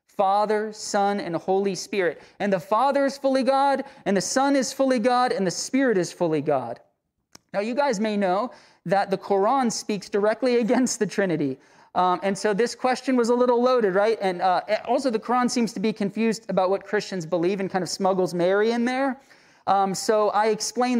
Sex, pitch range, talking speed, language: male, 185-240 Hz, 200 wpm, English